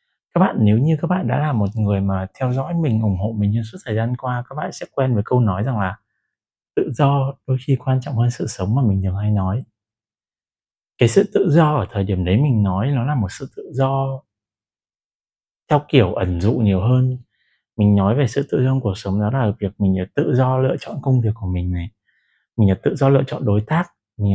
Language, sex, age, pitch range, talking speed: Vietnamese, male, 20-39, 100-130 Hz, 245 wpm